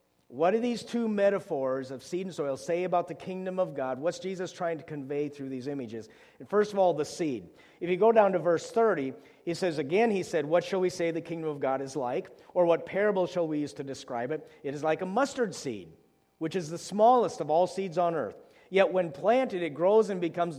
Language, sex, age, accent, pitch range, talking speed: English, male, 50-69, American, 155-215 Hz, 235 wpm